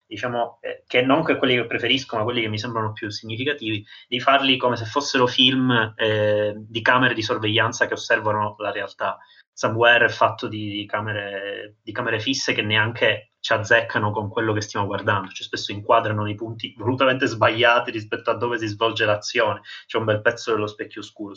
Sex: male